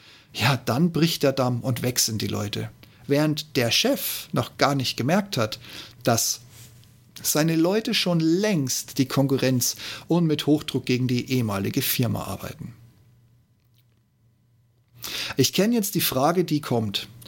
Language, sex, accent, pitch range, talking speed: German, male, German, 120-155 Hz, 135 wpm